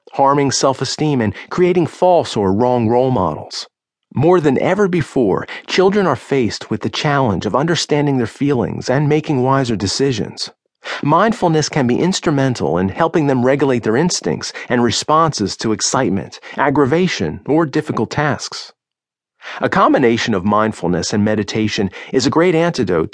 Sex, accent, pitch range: male, American, 110-155 Hz